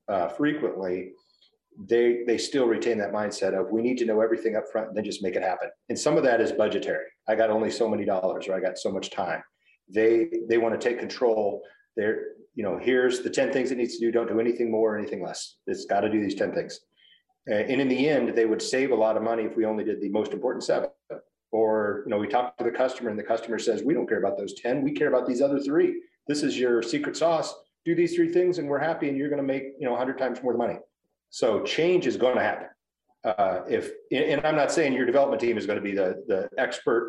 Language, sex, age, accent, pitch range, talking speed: English, male, 40-59, American, 115-170 Hz, 260 wpm